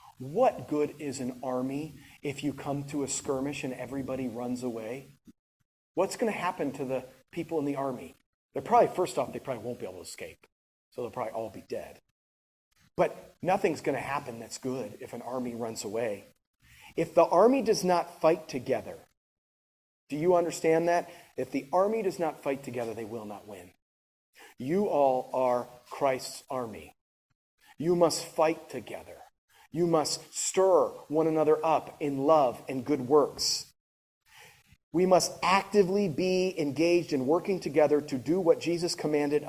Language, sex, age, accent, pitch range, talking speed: English, male, 30-49, American, 125-160 Hz, 165 wpm